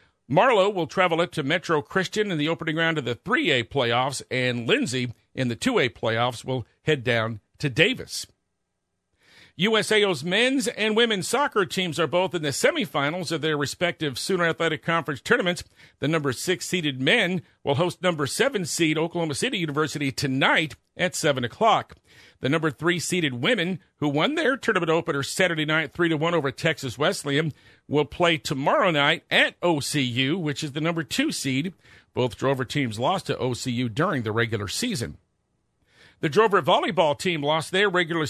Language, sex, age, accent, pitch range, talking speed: English, male, 50-69, American, 140-180 Hz, 170 wpm